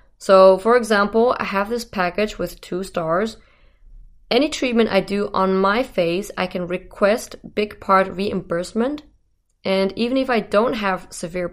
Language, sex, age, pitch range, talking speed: English, female, 20-39, 185-225 Hz, 155 wpm